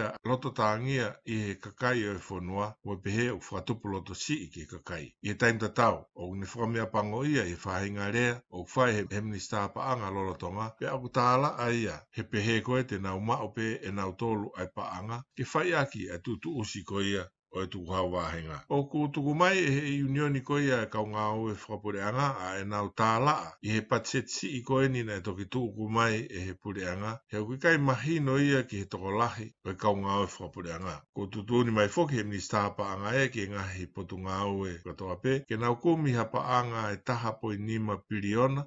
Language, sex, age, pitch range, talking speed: English, male, 60-79, 100-125 Hz, 165 wpm